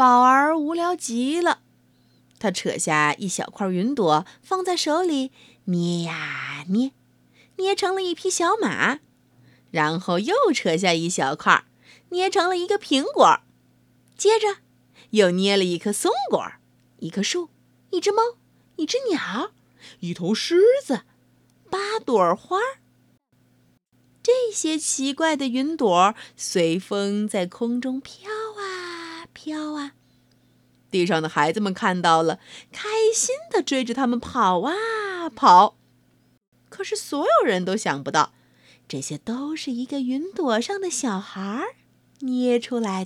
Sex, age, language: female, 30-49, Chinese